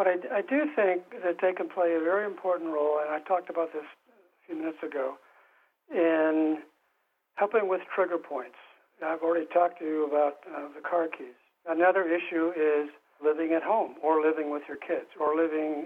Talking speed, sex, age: 185 wpm, male, 60-79